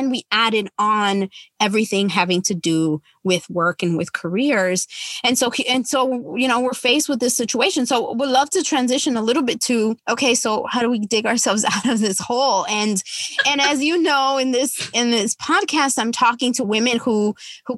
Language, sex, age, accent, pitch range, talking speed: English, female, 20-39, American, 210-275 Hz, 200 wpm